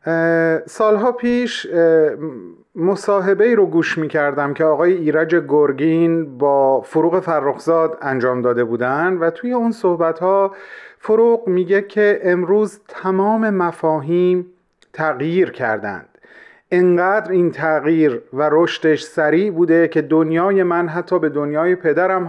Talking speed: 120 wpm